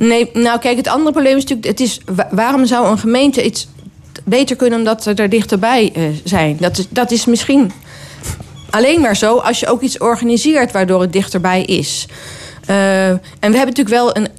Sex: female